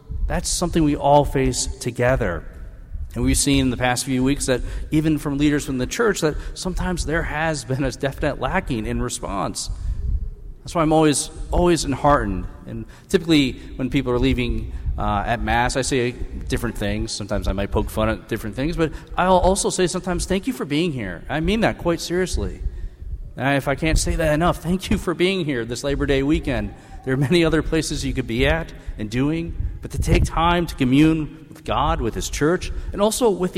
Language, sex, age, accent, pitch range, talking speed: English, male, 40-59, American, 115-155 Hz, 205 wpm